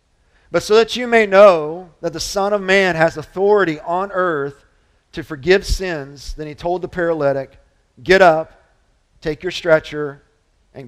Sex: male